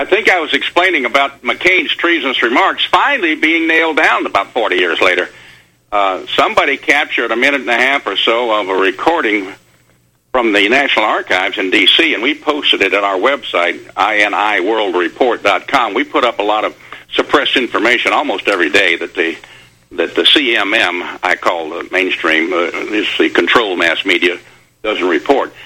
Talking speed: 170 wpm